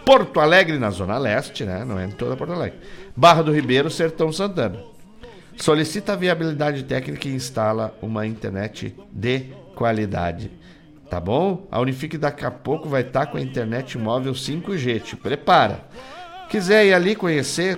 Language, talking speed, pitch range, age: Portuguese, 155 wpm, 115-170 Hz, 50-69